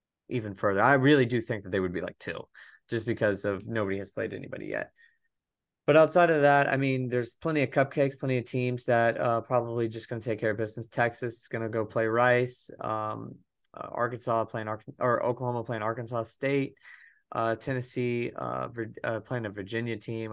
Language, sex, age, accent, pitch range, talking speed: English, male, 30-49, American, 110-125 Hz, 200 wpm